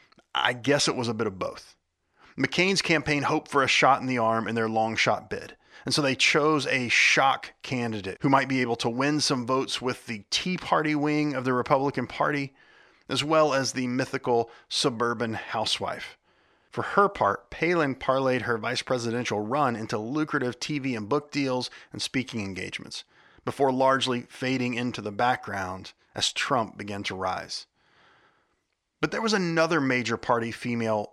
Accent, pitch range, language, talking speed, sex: American, 115-140 Hz, English, 170 wpm, male